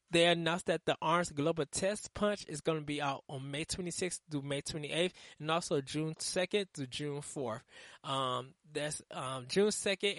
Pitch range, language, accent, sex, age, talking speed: 135-170 Hz, English, American, male, 20-39, 185 wpm